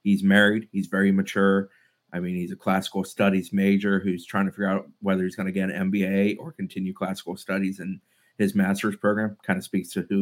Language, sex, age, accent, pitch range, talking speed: English, male, 30-49, American, 95-110 Hz, 215 wpm